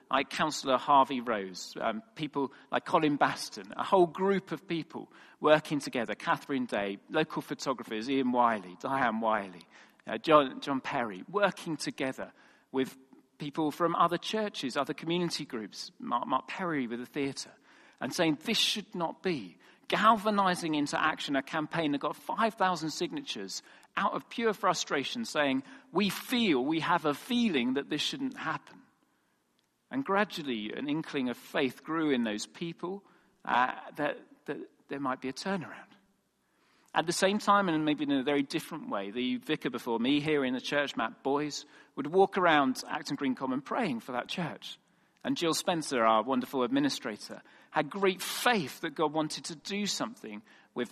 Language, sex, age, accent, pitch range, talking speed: English, male, 40-59, British, 135-190 Hz, 165 wpm